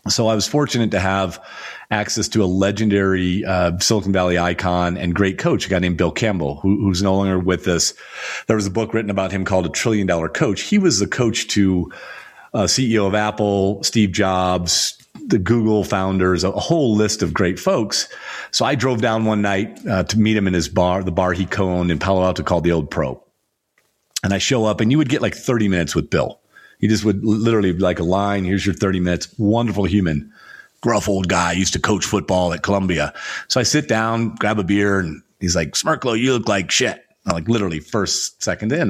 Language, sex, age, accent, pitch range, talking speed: English, male, 40-59, American, 90-110 Hz, 215 wpm